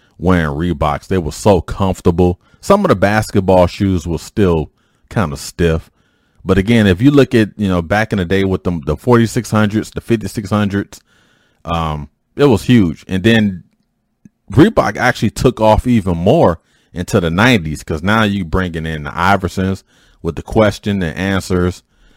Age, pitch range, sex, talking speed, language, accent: 30-49, 80-110 Hz, male, 165 wpm, English, American